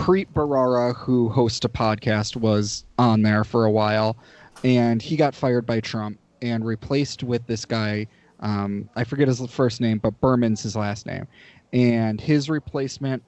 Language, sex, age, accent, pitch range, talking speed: English, male, 20-39, American, 110-135 Hz, 165 wpm